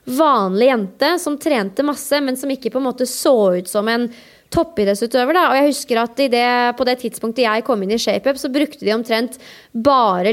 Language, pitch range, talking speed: English, 225-275 Hz, 215 wpm